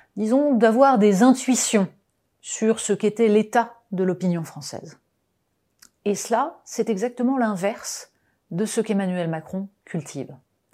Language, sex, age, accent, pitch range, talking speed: French, female, 30-49, French, 175-235 Hz, 115 wpm